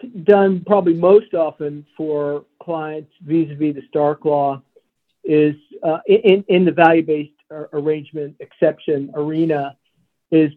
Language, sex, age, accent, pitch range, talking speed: English, male, 50-69, American, 145-170 Hz, 115 wpm